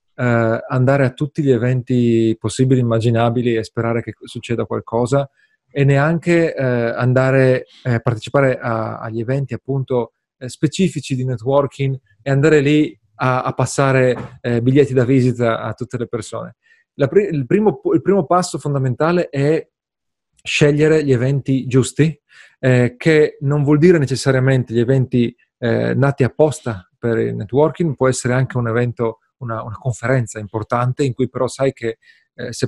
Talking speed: 155 wpm